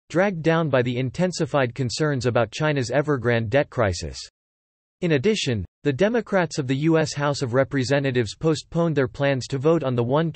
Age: 40-59